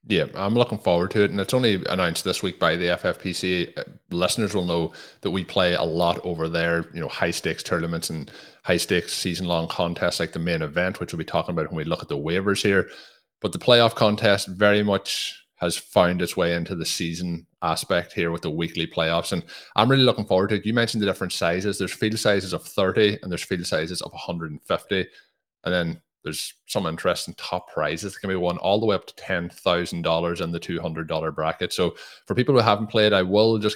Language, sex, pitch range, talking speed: English, male, 85-105 Hz, 220 wpm